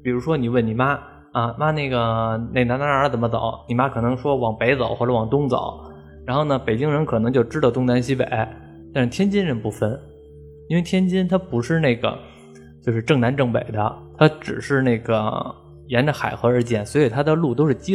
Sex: male